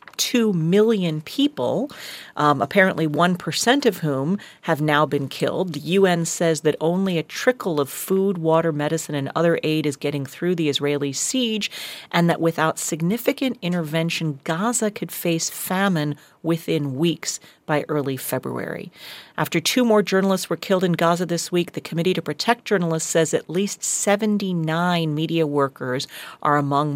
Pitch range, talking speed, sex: 145-190 Hz, 155 wpm, female